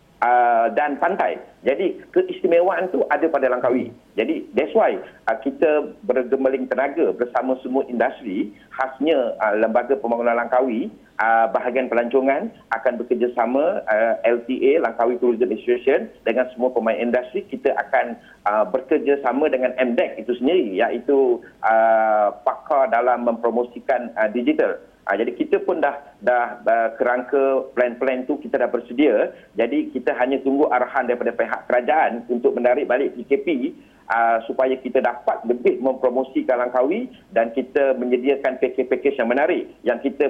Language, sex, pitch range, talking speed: Malay, male, 120-150 Hz, 140 wpm